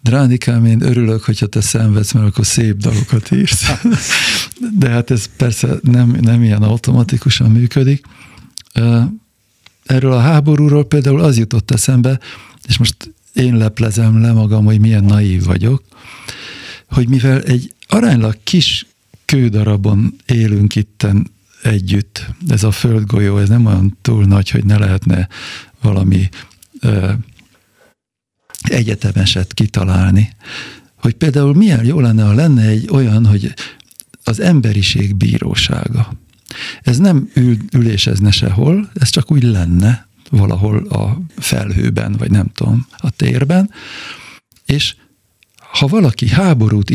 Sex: male